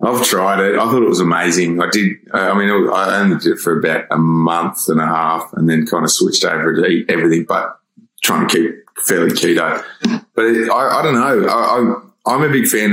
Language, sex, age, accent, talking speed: English, male, 20-39, Australian, 220 wpm